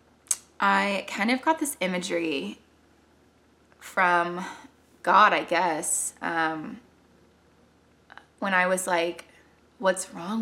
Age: 20-39